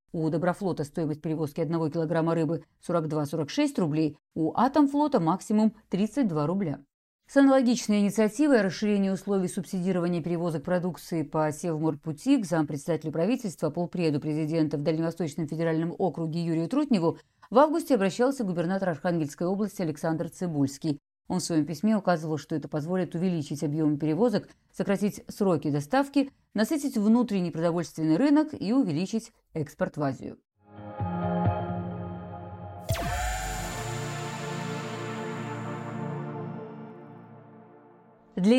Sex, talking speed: female, 105 wpm